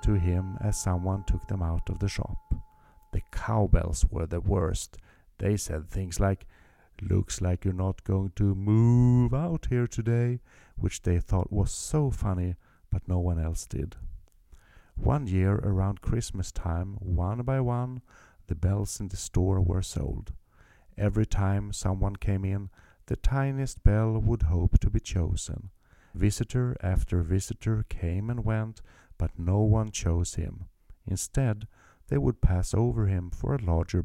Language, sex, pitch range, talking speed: English, male, 90-110 Hz, 155 wpm